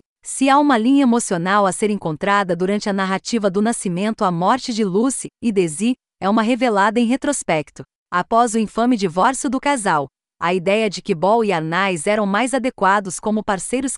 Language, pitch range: Portuguese, 205-255 Hz